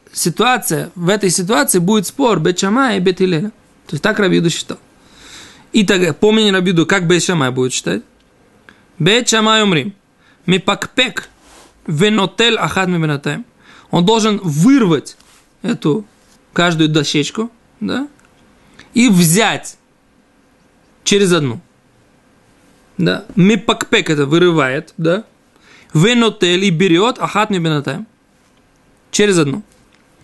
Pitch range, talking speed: 165-220 Hz, 100 wpm